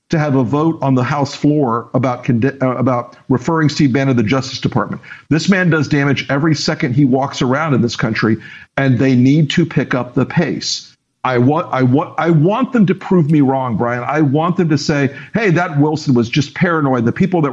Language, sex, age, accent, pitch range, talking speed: English, male, 50-69, American, 130-155 Hz, 220 wpm